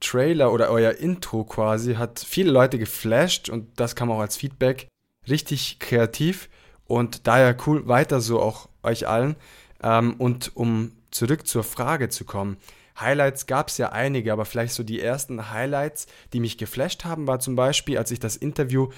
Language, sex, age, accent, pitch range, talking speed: German, male, 20-39, German, 115-135 Hz, 170 wpm